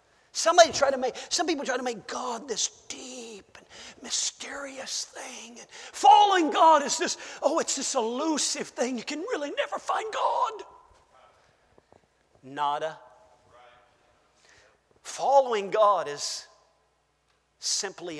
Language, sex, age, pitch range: English, male, 50-69, 205-325 Hz